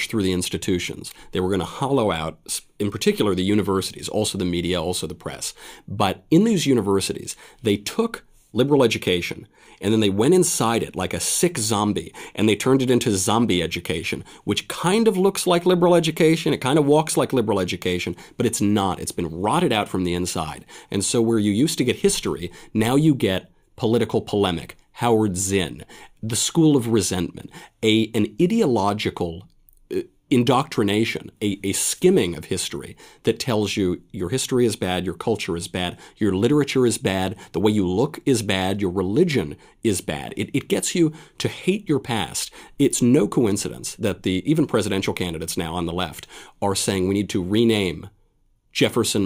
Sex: male